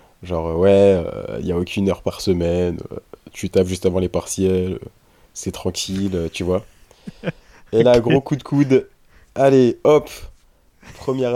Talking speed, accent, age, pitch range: 170 wpm, French, 20-39, 90-115 Hz